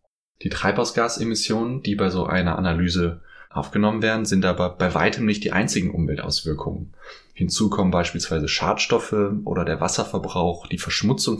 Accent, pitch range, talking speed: German, 85-105 Hz, 135 wpm